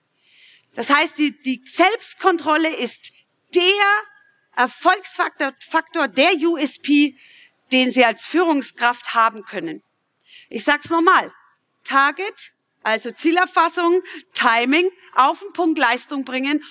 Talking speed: 110 wpm